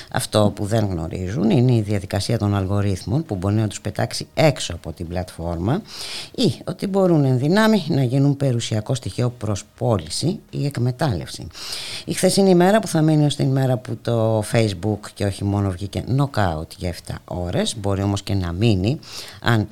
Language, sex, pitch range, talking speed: Greek, female, 95-130 Hz, 175 wpm